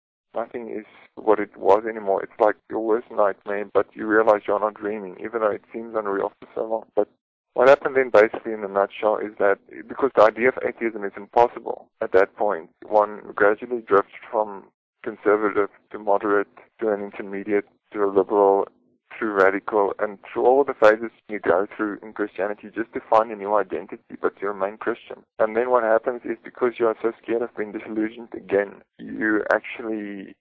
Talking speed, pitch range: 190 wpm, 100-115 Hz